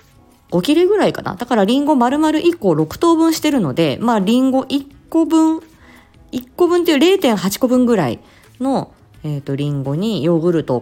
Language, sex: Japanese, female